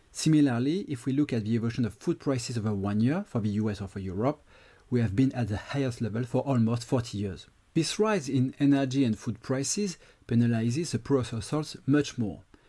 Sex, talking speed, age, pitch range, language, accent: male, 205 wpm, 40-59, 110-140 Hz, English, French